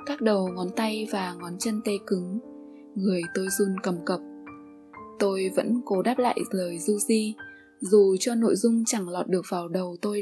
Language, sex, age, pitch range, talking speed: Vietnamese, female, 20-39, 190-240 Hz, 190 wpm